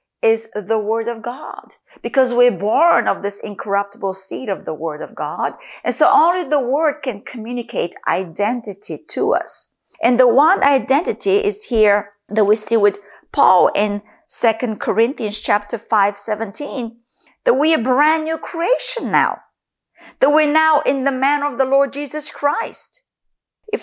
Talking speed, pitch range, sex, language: 155 wpm, 210-285 Hz, female, English